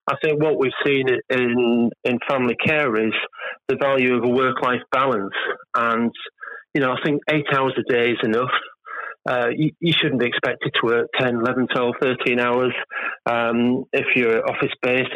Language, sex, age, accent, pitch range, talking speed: English, male, 30-49, British, 120-140 Hz, 175 wpm